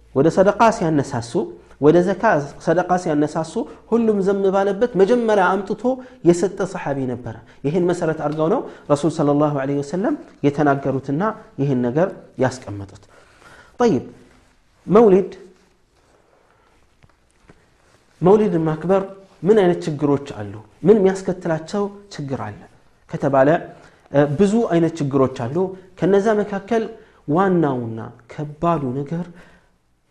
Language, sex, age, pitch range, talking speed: Amharic, male, 40-59, 125-175 Hz, 105 wpm